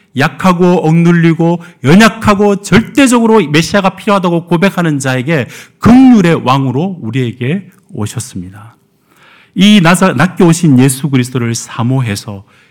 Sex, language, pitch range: male, Korean, 130-205 Hz